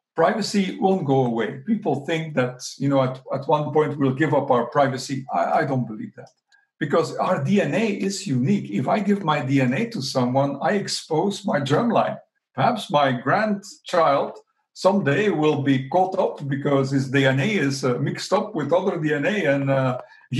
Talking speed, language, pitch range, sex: 175 wpm, English, 135-195 Hz, male